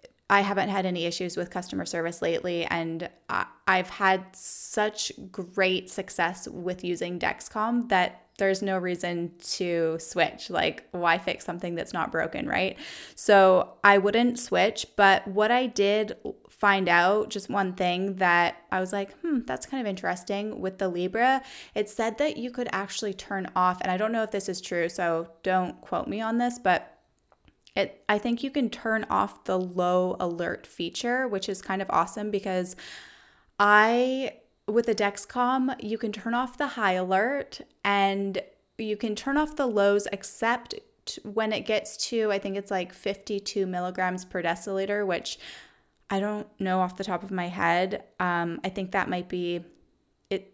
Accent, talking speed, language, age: American, 170 wpm, English, 20-39